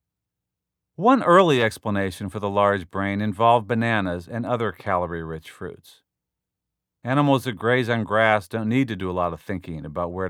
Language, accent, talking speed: English, American, 165 wpm